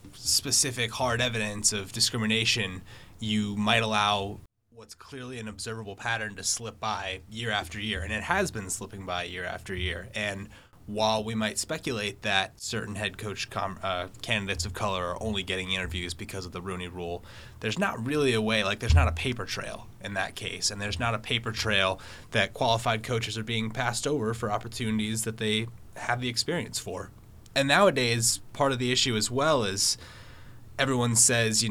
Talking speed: 185 wpm